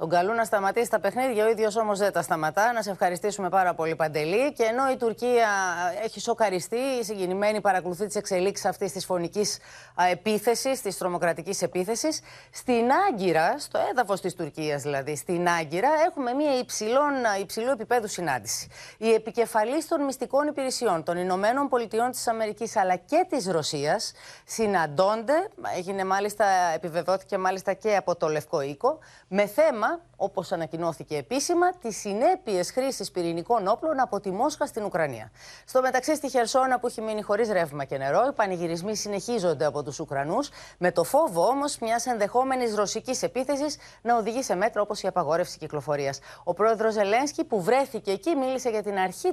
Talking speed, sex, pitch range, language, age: 160 wpm, female, 180-250 Hz, Greek, 30-49